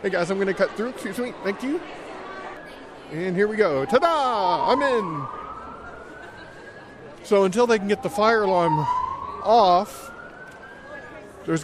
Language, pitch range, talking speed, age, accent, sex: English, 150-225 Hz, 145 wpm, 50-69, American, male